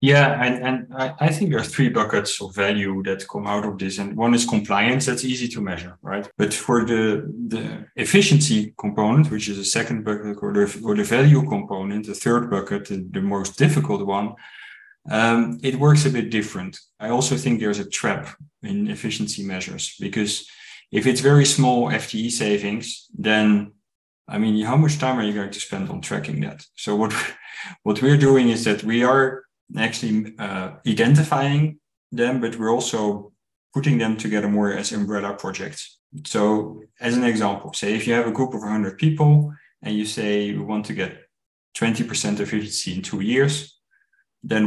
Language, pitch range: English, 105-130 Hz